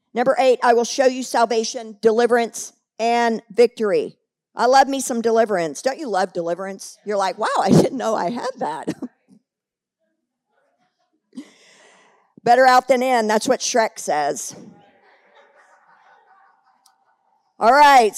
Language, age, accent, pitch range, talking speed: English, 50-69, American, 225-300 Hz, 125 wpm